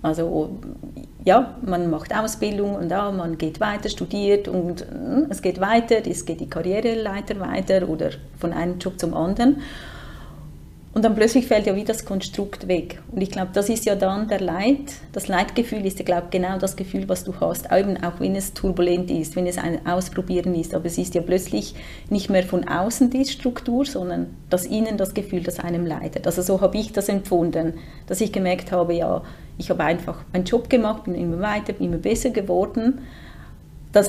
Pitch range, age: 175-220 Hz, 30-49